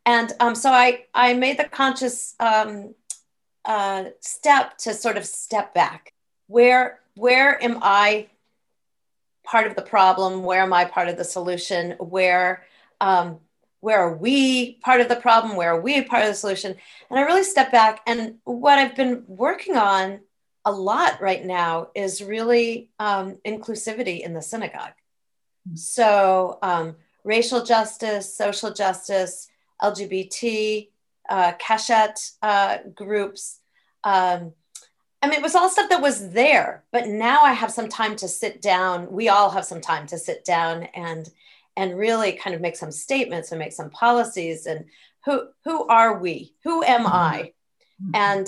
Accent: American